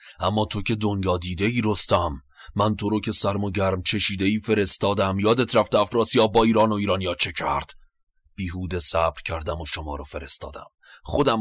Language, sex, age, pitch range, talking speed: Persian, male, 30-49, 85-105 Hz, 175 wpm